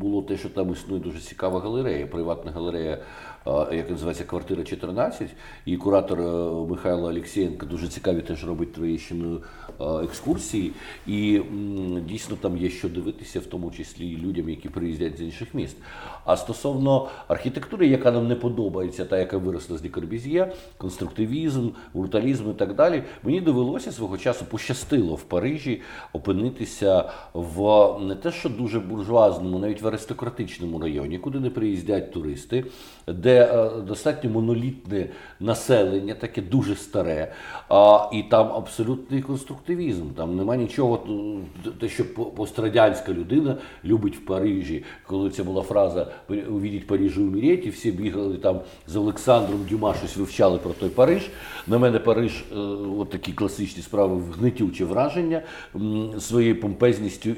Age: 50-69